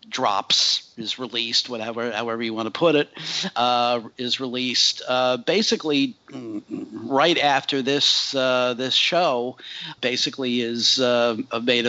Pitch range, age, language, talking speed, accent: 125-155 Hz, 50-69, English, 125 wpm, American